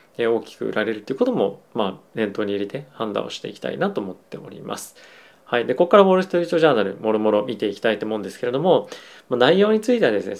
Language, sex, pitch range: Japanese, male, 115-160 Hz